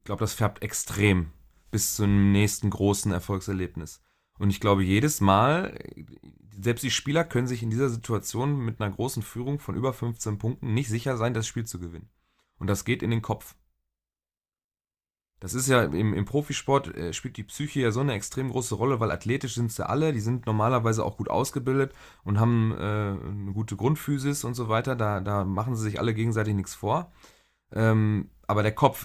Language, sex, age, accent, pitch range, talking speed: German, male, 30-49, German, 100-120 Hz, 190 wpm